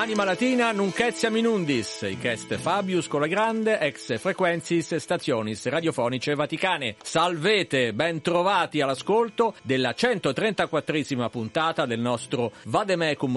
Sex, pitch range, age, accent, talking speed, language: male, 115-165 Hz, 50-69, native, 110 wpm, Italian